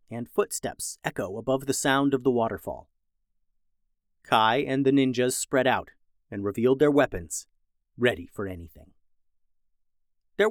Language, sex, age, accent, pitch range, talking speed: English, male, 30-49, American, 100-155 Hz, 130 wpm